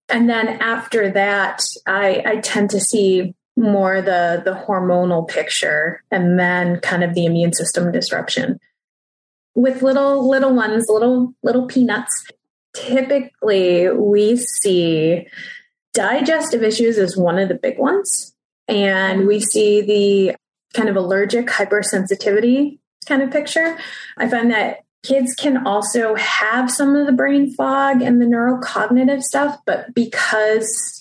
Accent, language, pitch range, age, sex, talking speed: American, English, 195-250 Hz, 20-39, female, 135 wpm